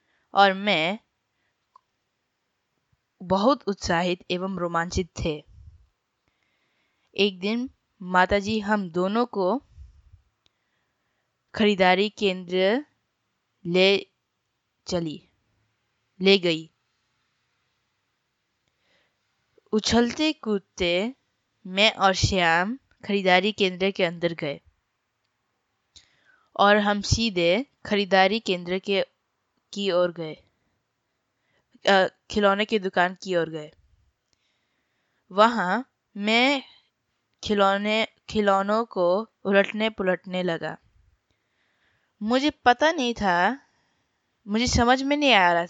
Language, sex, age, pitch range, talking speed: Hindi, female, 20-39, 165-215 Hz, 80 wpm